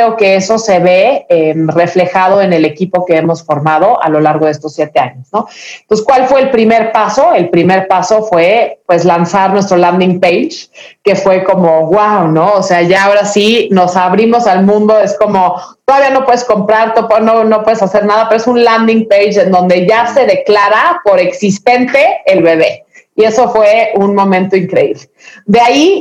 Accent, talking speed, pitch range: Mexican, 190 wpm, 185-230 Hz